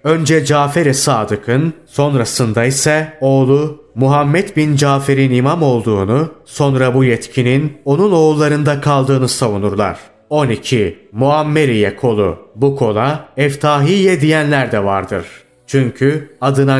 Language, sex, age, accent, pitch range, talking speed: Turkish, male, 30-49, native, 125-150 Hz, 105 wpm